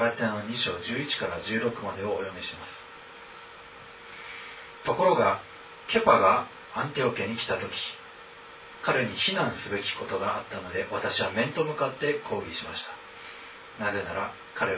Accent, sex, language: native, male, Japanese